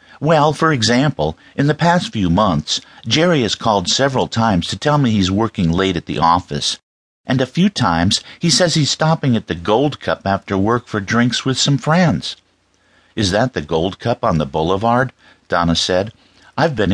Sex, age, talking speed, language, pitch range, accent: male, 50-69, 190 wpm, English, 85-130 Hz, American